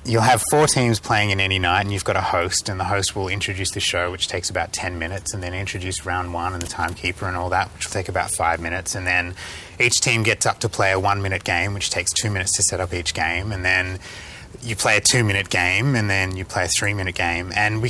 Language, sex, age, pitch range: English, male, 20-39, 90-115 Hz